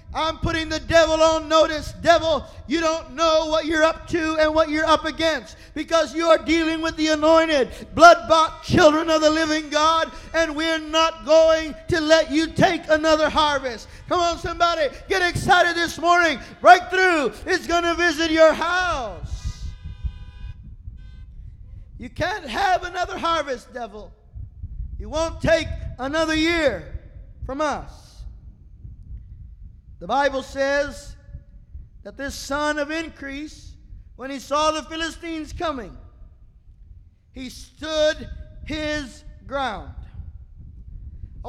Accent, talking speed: American, 130 wpm